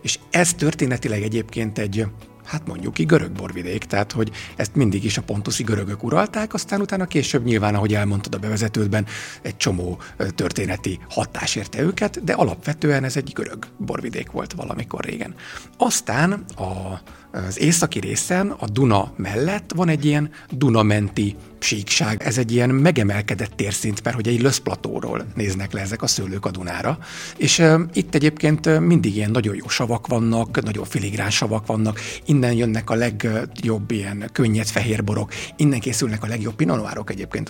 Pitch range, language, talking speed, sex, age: 105-150 Hz, Hungarian, 155 wpm, male, 50-69